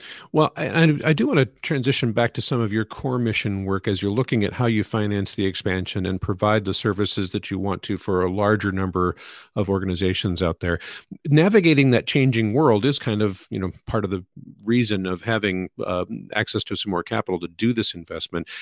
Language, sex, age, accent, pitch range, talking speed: English, male, 50-69, American, 100-130 Hz, 210 wpm